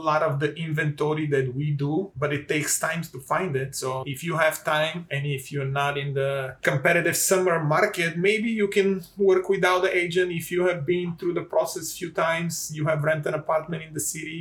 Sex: male